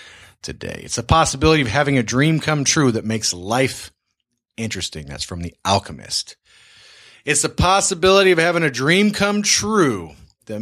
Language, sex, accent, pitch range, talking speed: English, male, American, 105-145 Hz, 160 wpm